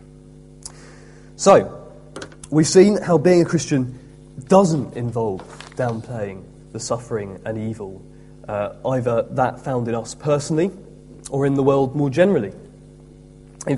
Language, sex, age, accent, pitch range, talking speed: English, male, 30-49, British, 125-160 Hz, 120 wpm